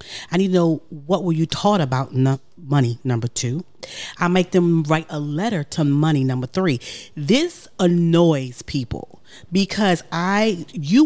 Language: English